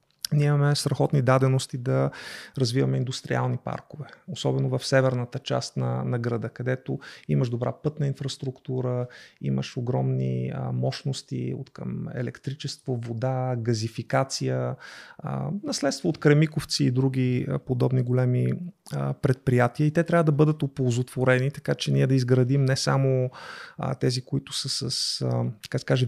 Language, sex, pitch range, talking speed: Bulgarian, male, 125-140 Hz, 140 wpm